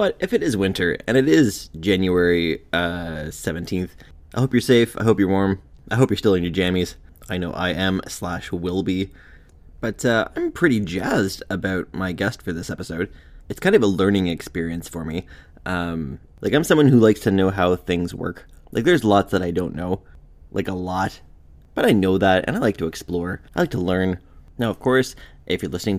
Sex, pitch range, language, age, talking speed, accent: male, 80-100 Hz, English, 20-39, 210 wpm, American